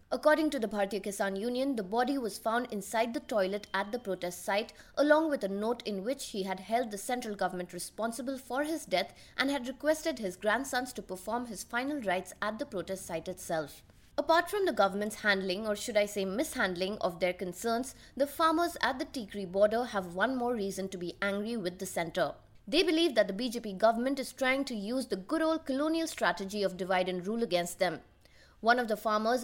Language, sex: English, female